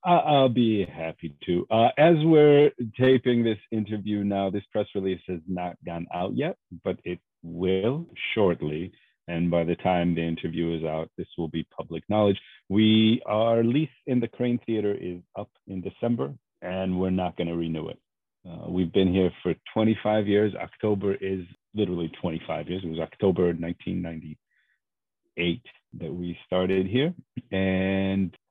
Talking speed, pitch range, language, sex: 160 wpm, 85-110 Hz, English, male